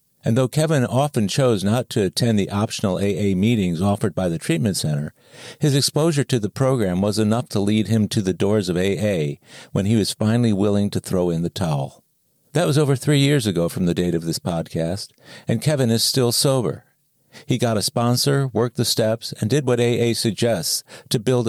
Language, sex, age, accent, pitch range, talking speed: English, male, 50-69, American, 95-125 Hz, 205 wpm